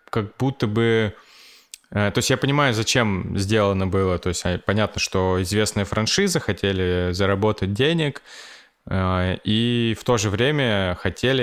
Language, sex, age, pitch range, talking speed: Russian, male, 20-39, 90-115 Hz, 130 wpm